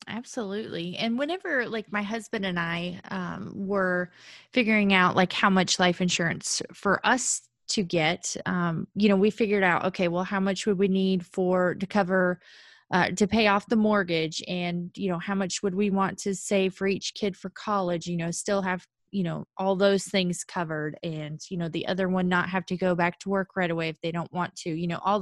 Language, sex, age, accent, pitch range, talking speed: English, female, 20-39, American, 175-200 Hz, 215 wpm